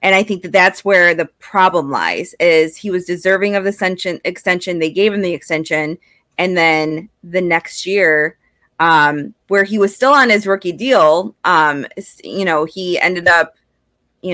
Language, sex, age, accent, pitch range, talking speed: English, female, 20-39, American, 170-200 Hz, 175 wpm